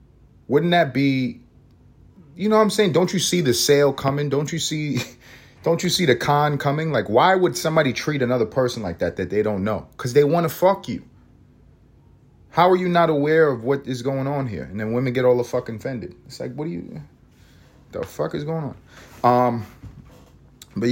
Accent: American